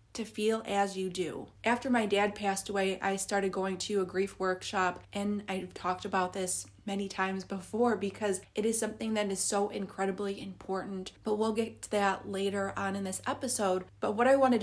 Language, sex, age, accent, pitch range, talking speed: English, female, 20-39, American, 190-220 Hz, 195 wpm